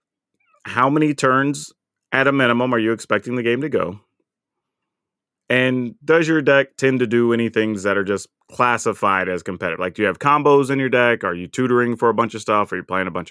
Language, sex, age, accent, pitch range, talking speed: English, male, 30-49, American, 105-145 Hz, 220 wpm